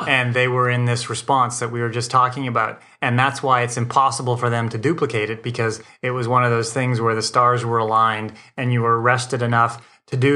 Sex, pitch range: male, 115-135 Hz